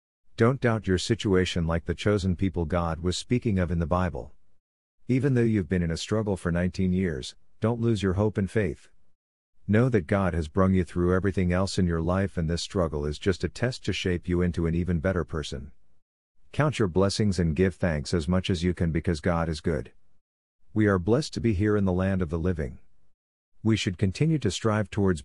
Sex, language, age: male, English, 50-69